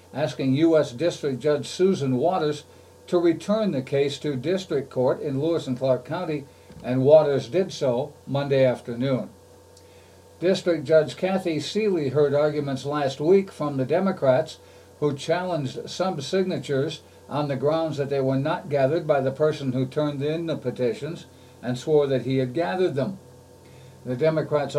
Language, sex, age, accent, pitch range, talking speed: English, male, 60-79, American, 130-165 Hz, 155 wpm